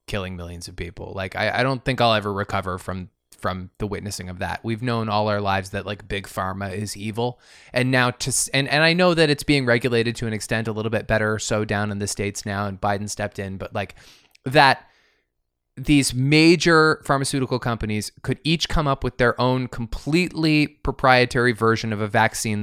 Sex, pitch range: male, 105-140 Hz